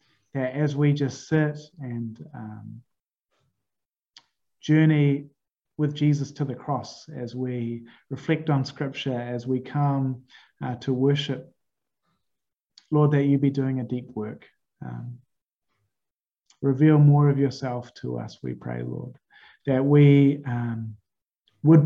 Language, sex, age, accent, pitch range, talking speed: English, male, 20-39, Australian, 120-145 Hz, 125 wpm